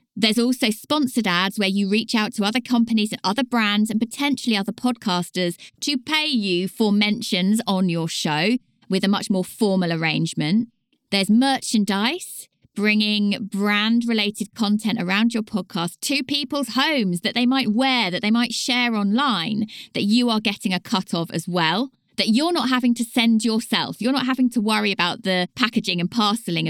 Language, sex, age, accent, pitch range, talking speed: English, female, 20-39, British, 185-240 Hz, 175 wpm